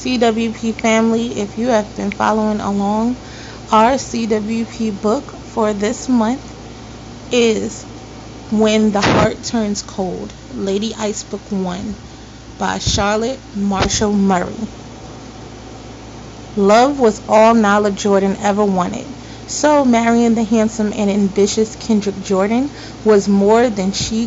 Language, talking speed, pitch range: English, 115 wpm, 195-225 Hz